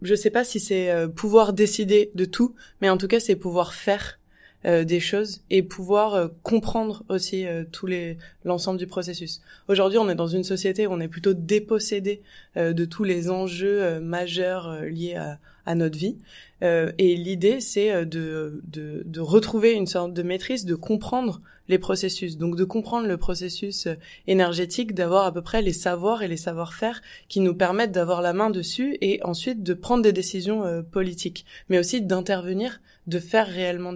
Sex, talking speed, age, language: female, 180 wpm, 20-39, French